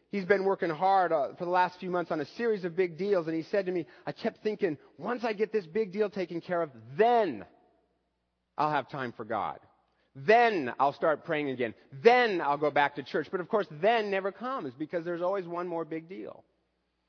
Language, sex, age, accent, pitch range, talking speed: English, male, 40-59, American, 135-195 Hz, 220 wpm